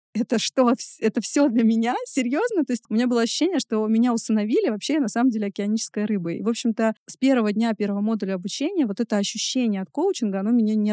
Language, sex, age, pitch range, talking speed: Russian, female, 20-39, 205-245 Hz, 215 wpm